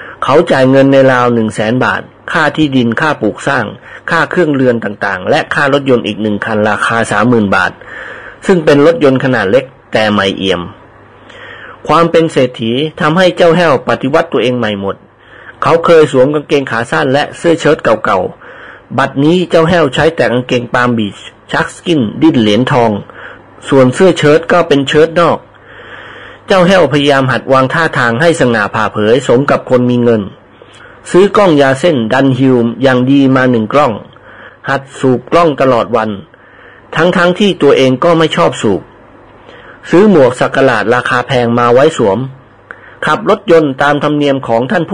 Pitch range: 120-160 Hz